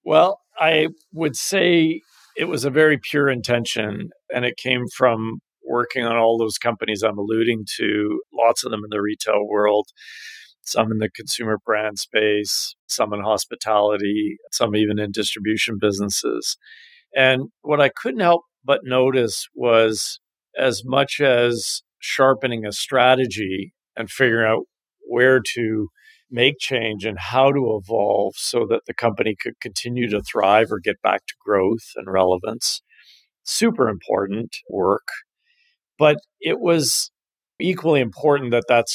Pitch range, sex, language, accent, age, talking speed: 110-150 Hz, male, English, American, 50-69, 145 wpm